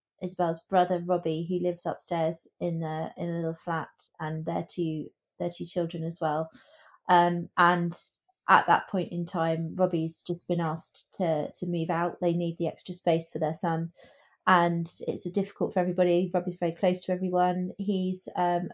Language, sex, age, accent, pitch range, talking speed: English, female, 30-49, British, 170-185 Hz, 180 wpm